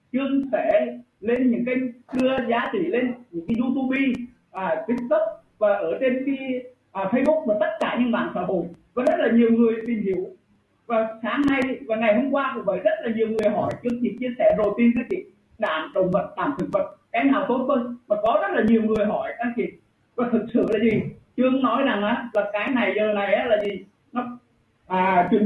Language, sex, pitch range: Vietnamese, male, 210-270 Hz